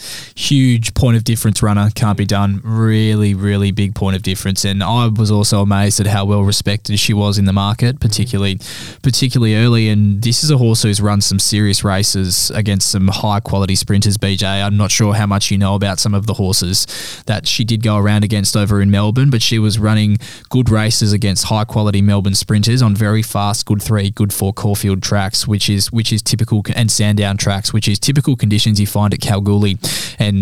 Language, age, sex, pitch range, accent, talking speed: English, 10-29, male, 100-115 Hz, Australian, 205 wpm